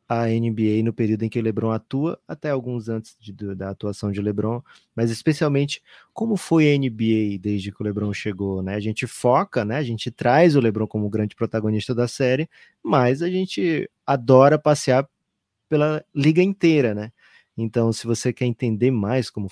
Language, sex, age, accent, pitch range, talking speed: Portuguese, male, 20-39, Brazilian, 105-130 Hz, 180 wpm